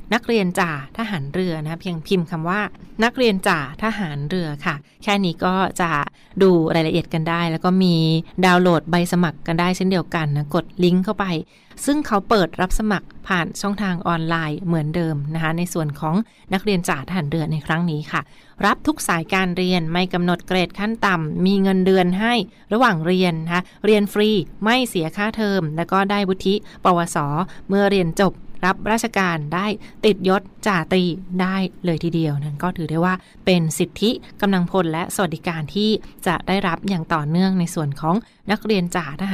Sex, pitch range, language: female, 170-205 Hz, Thai